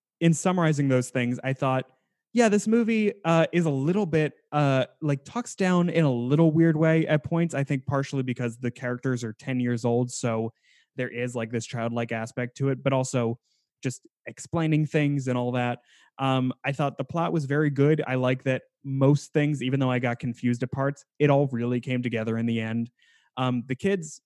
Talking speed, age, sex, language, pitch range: 205 wpm, 20-39, male, English, 125-160 Hz